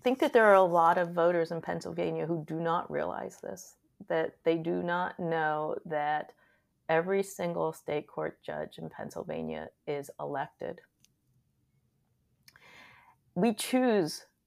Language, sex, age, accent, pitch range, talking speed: English, female, 40-59, American, 155-180 Hz, 135 wpm